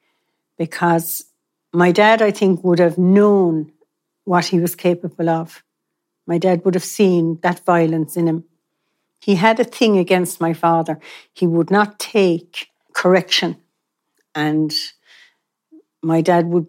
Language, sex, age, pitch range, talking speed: English, female, 60-79, 170-200 Hz, 135 wpm